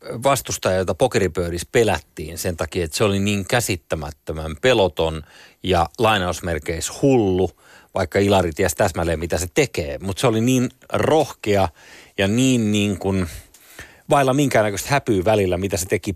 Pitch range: 95-125 Hz